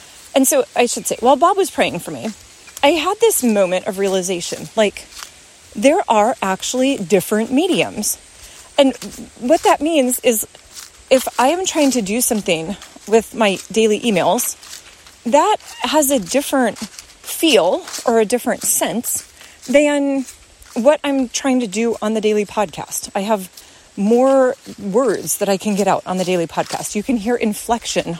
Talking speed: 160 wpm